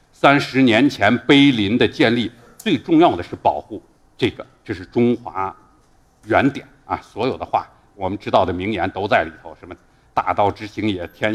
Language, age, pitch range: Chinese, 50-69, 110-150 Hz